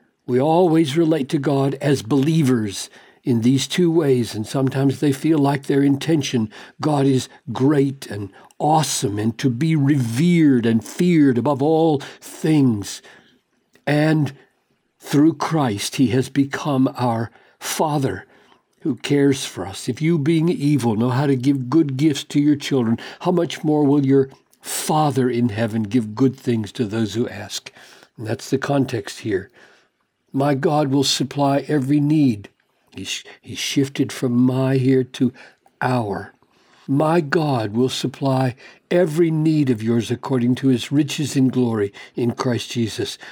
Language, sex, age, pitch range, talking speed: English, male, 60-79, 120-150 Hz, 150 wpm